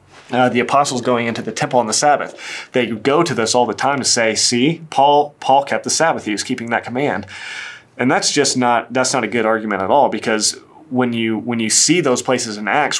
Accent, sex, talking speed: American, male, 235 wpm